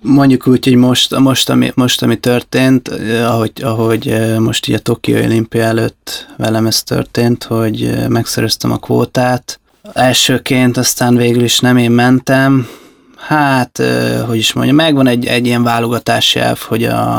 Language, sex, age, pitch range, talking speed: Hungarian, male, 20-39, 115-125 Hz, 145 wpm